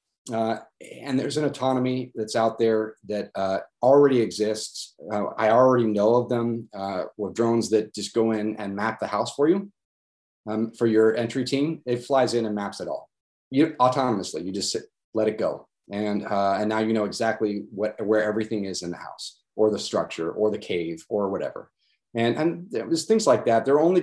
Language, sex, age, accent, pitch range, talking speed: English, male, 40-59, American, 105-125 Hz, 200 wpm